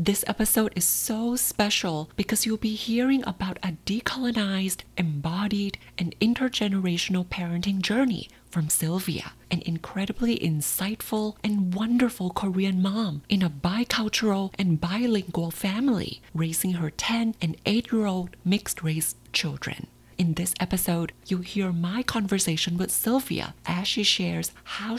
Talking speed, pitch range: 125 wpm, 170-215 Hz